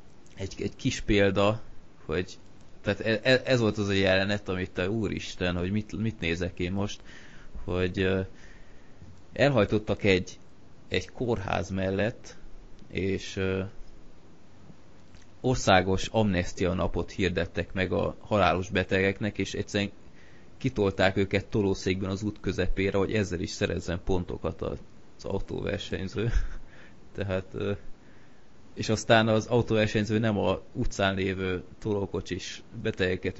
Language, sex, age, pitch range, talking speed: Hungarian, male, 20-39, 90-105 Hz, 115 wpm